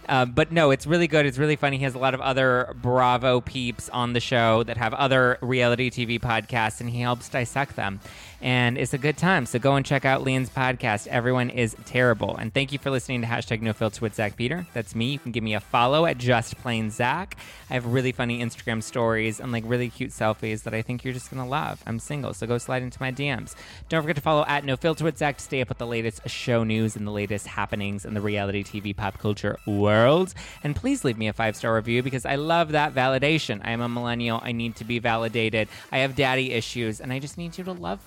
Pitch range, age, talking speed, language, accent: 115-135 Hz, 20-39, 245 wpm, English, American